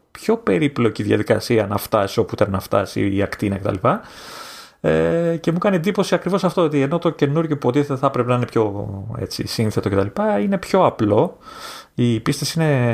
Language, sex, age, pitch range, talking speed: Greek, male, 30-49, 110-150 Hz, 185 wpm